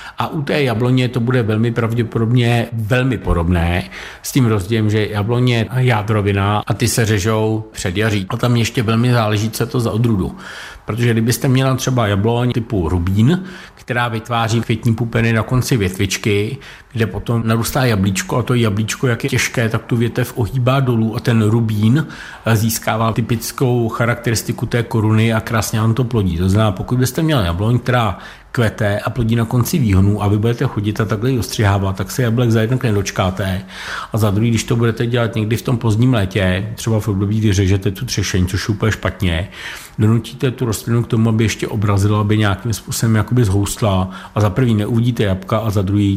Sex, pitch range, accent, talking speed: male, 100-120 Hz, native, 185 wpm